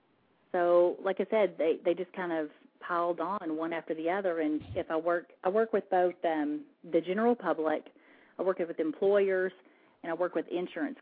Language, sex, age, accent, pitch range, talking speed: English, female, 30-49, American, 160-195 Hz, 195 wpm